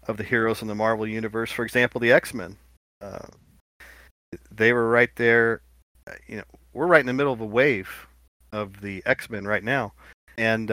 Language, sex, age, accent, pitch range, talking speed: English, male, 40-59, American, 105-125 Hz, 180 wpm